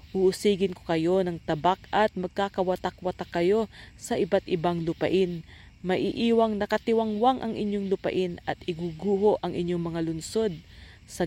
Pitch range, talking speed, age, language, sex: 175-210 Hz, 130 wpm, 40-59, English, female